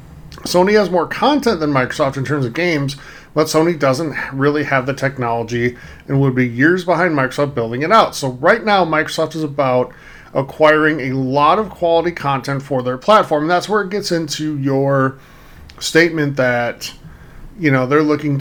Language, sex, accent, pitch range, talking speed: English, male, American, 130-160 Hz, 175 wpm